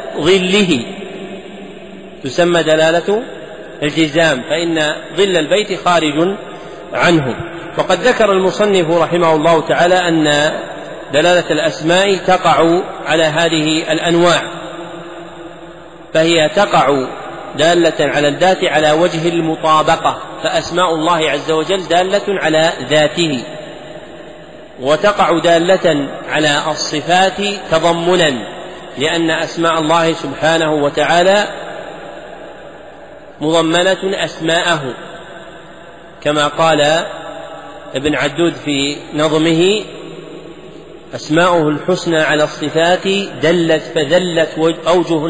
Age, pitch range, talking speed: 40-59, 155-175 Hz, 80 wpm